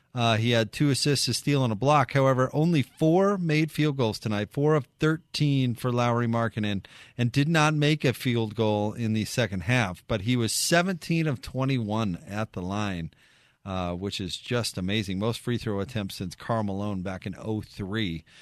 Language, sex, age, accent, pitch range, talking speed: English, male, 40-59, American, 110-145 Hz, 190 wpm